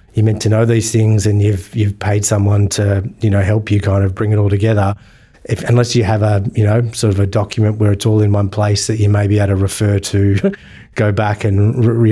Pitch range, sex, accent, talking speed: 100-115 Hz, male, Australian, 255 wpm